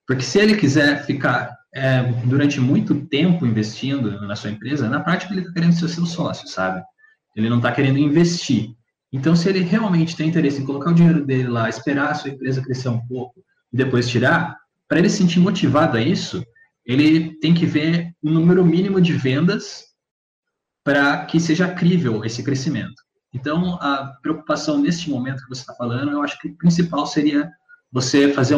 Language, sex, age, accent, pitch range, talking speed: Portuguese, male, 20-39, Brazilian, 130-170 Hz, 185 wpm